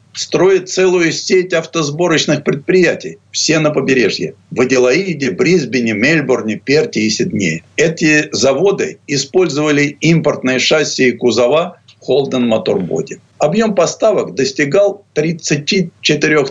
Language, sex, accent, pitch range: Russian, male, native, 130-185 Hz